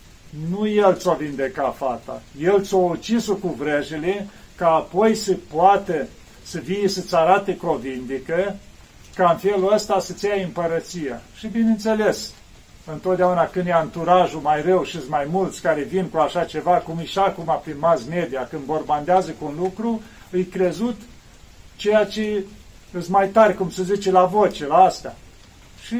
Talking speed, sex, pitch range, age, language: 160 wpm, male, 160-200 Hz, 40-59, Romanian